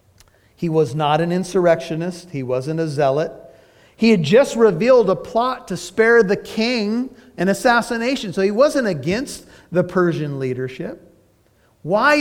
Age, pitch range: 40-59, 140-195 Hz